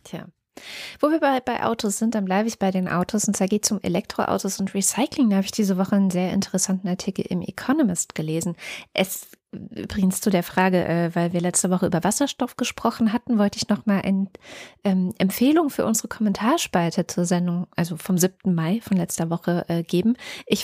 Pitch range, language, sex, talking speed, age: 185-225 Hz, German, female, 200 wpm, 20-39